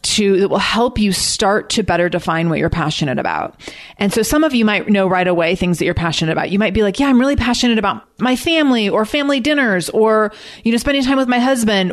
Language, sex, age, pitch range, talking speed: English, female, 30-49, 185-245 Hz, 245 wpm